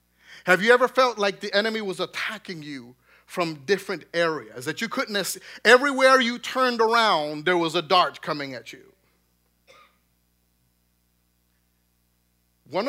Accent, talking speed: American, 140 wpm